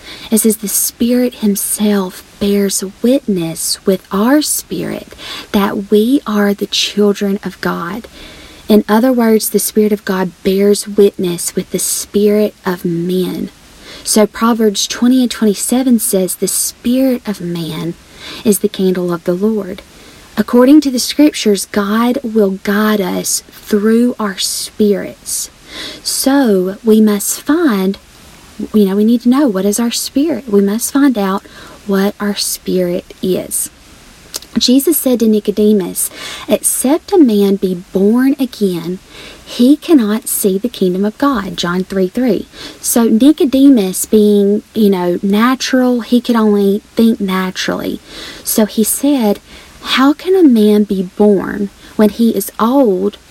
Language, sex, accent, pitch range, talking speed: English, female, American, 195-240 Hz, 140 wpm